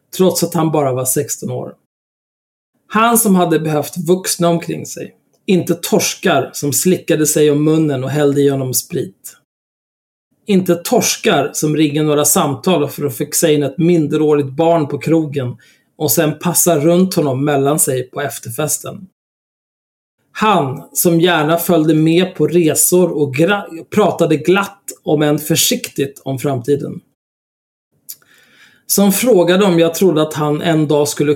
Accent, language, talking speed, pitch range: native, Swedish, 140 wpm, 145-180 Hz